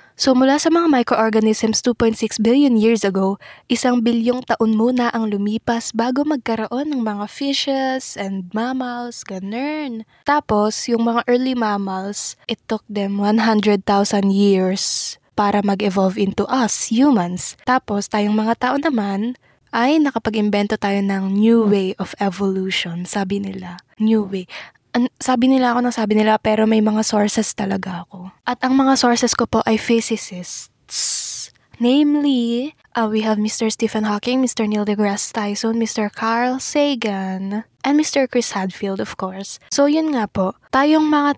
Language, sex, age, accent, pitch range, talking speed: English, female, 20-39, Filipino, 200-245 Hz, 150 wpm